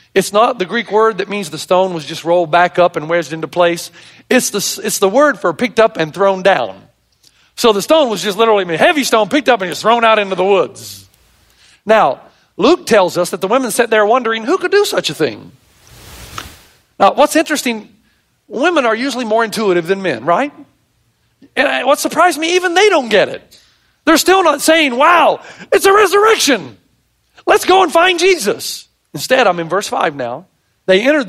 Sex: male